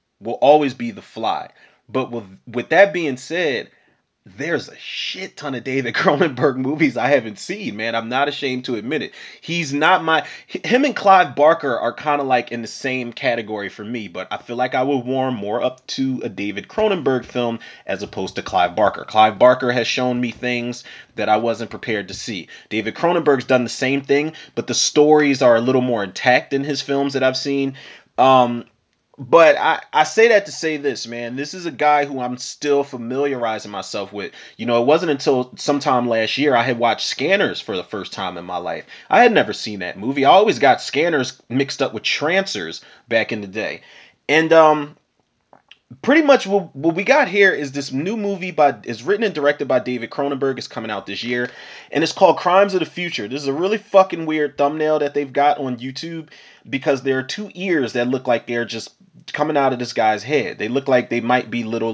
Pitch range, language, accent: 120-155 Hz, English, American